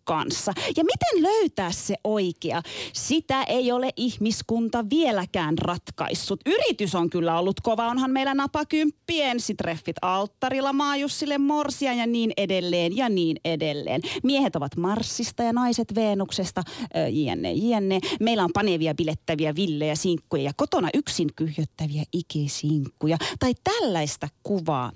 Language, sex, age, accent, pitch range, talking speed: Finnish, female, 30-49, native, 160-235 Hz, 125 wpm